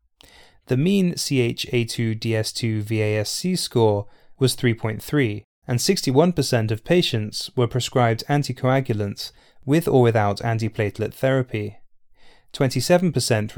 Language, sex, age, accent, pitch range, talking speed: English, male, 20-39, British, 110-135 Hz, 90 wpm